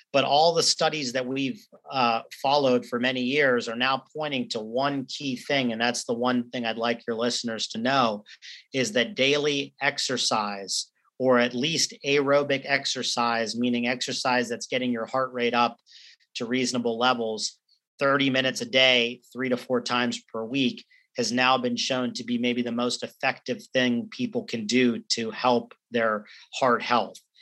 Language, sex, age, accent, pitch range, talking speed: English, male, 40-59, American, 120-130 Hz, 170 wpm